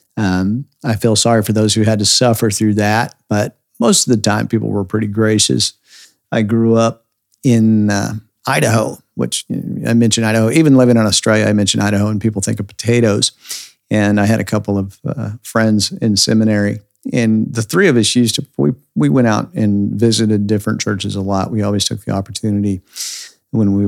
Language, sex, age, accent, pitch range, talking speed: English, male, 50-69, American, 105-120 Hz, 200 wpm